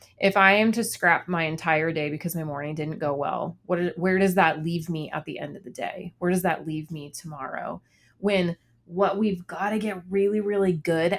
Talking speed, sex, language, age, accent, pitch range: 220 wpm, female, English, 30-49, American, 165-205 Hz